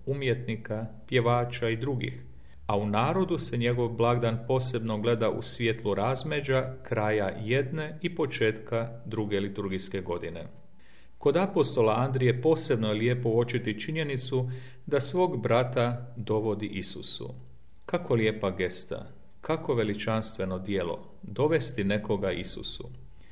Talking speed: 115 wpm